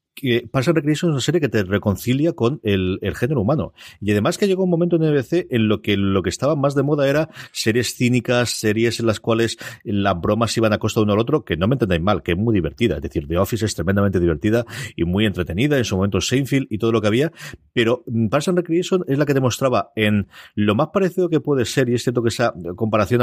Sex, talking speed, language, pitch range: male, 250 wpm, Spanish, 100-130 Hz